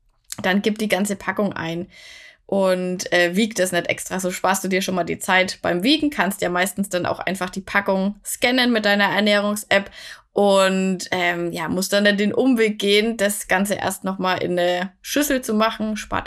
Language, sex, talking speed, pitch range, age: German, female, 190 wpm, 190-240 Hz, 20-39